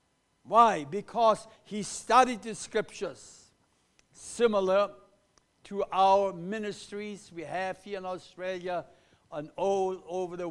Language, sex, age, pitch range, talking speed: English, male, 60-79, 170-210 Hz, 110 wpm